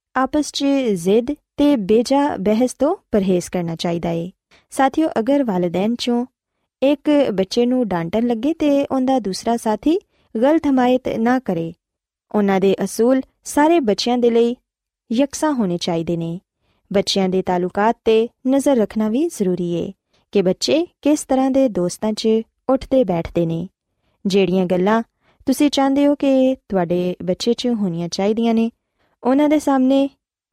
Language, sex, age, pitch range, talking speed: Punjabi, female, 20-39, 190-275 Hz, 130 wpm